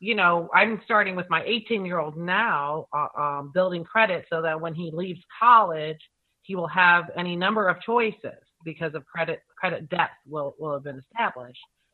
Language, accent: English, American